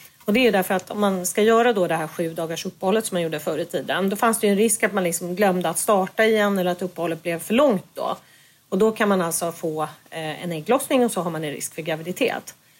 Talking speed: 265 wpm